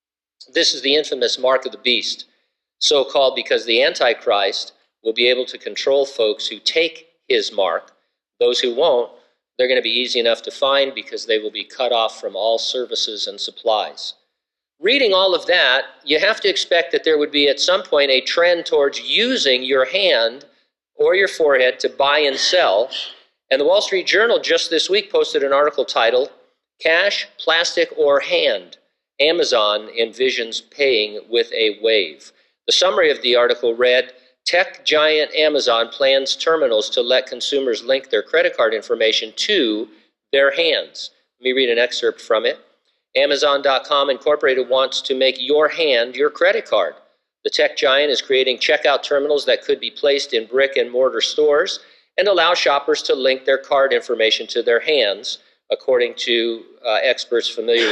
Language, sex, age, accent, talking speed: English, male, 50-69, American, 170 wpm